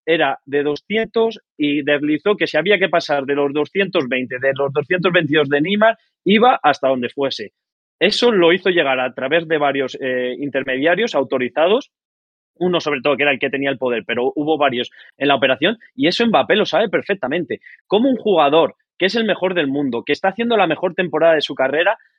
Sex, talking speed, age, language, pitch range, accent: male, 195 wpm, 20-39, Spanish, 135-185 Hz, Spanish